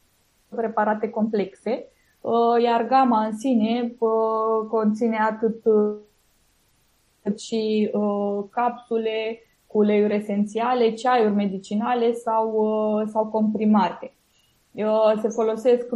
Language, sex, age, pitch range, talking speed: Romanian, female, 20-39, 210-230 Hz, 75 wpm